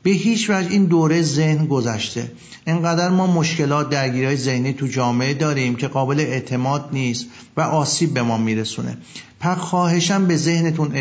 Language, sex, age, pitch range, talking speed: Persian, male, 50-69, 125-160 Hz, 155 wpm